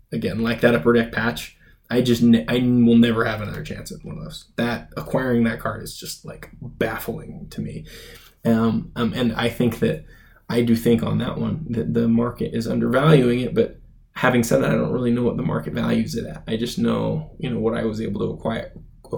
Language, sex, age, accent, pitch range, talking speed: English, male, 20-39, American, 115-125 Hz, 220 wpm